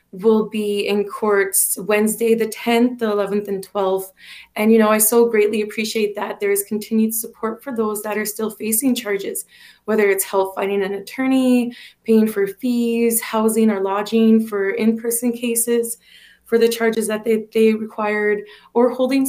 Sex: female